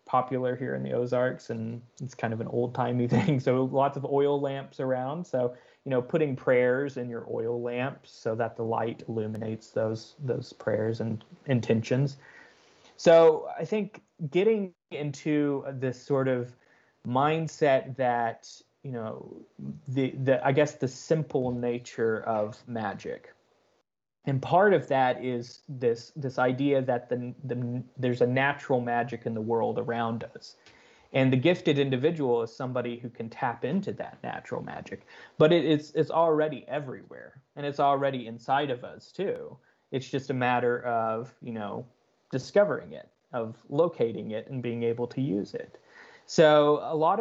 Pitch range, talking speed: 120-145 Hz, 160 wpm